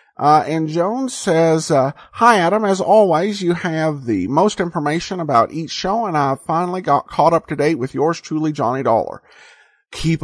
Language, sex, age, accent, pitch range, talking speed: English, male, 50-69, American, 145-200 Hz, 180 wpm